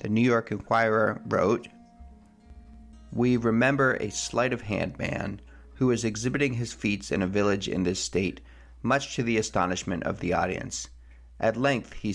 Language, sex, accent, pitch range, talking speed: English, male, American, 100-130 Hz, 155 wpm